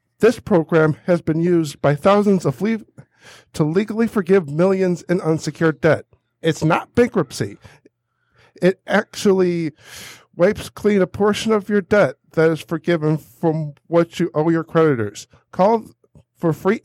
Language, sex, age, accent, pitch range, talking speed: English, male, 50-69, American, 150-195 Hz, 145 wpm